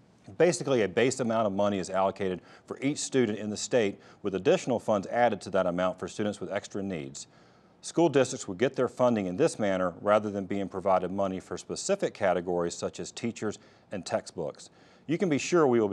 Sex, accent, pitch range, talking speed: male, American, 95-125 Hz, 205 wpm